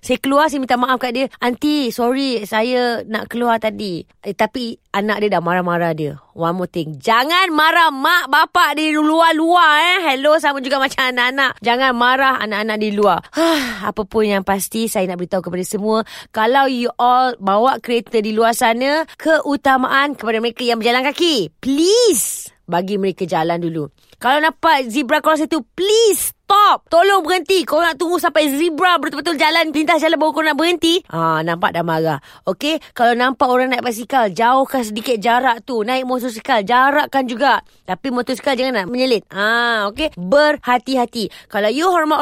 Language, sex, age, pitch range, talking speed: Malay, female, 20-39, 225-315 Hz, 170 wpm